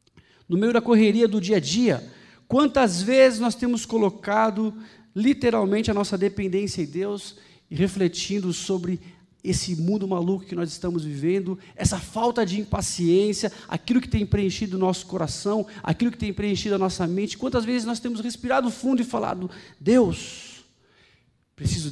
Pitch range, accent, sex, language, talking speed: 150-230 Hz, Brazilian, male, Portuguese, 155 wpm